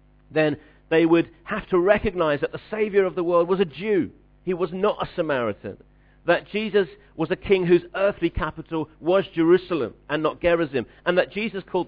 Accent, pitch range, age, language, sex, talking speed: British, 145-190 Hz, 50-69, English, male, 185 wpm